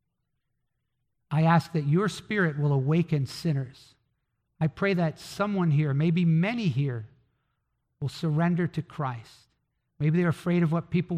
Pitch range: 125-165 Hz